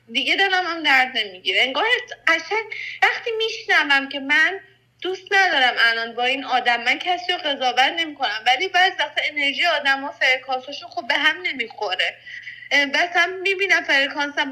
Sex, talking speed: female, 155 wpm